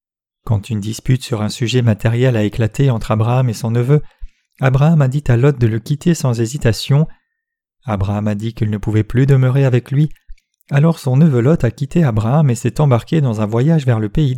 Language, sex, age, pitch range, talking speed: French, male, 30-49, 115-140 Hz, 210 wpm